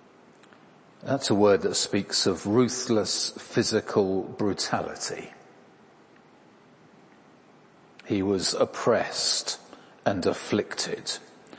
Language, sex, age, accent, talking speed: English, male, 50-69, British, 70 wpm